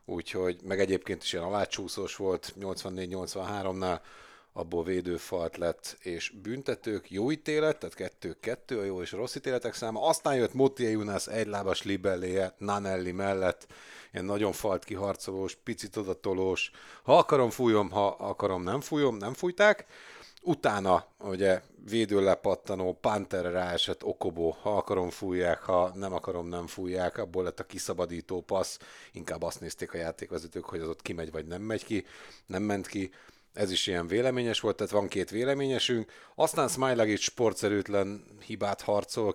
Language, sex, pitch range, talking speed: Hungarian, male, 90-105 Hz, 145 wpm